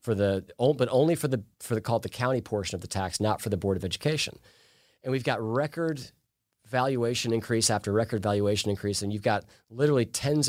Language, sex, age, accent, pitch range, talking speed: English, male, 40-59, American, 100-125 Hz, 205 wpm